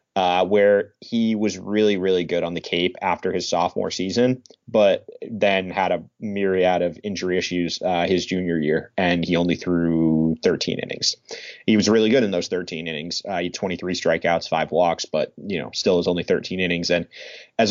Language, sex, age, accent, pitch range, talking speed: English, male, 30-49, American, 85-100 Hz, 195 wpm